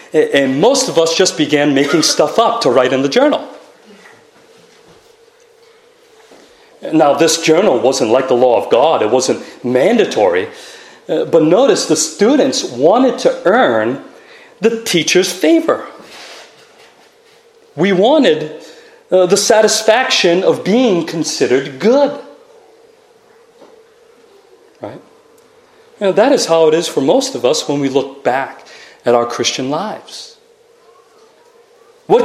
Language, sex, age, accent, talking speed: English, male, 40-59, American, 115 wpm